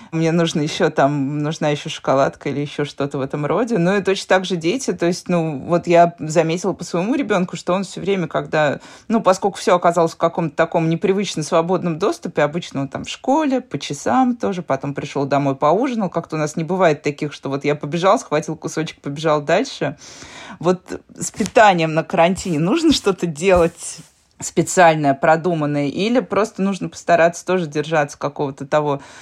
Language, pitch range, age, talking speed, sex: Russian, 150-180 Hz, 20-39, 180 wpm, female